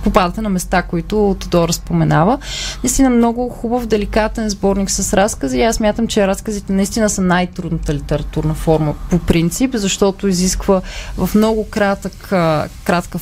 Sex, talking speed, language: female, 135 wpm, Bulgarian